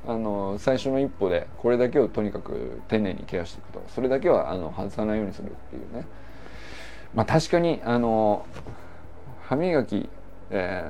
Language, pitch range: Japanese, 105-155 Hz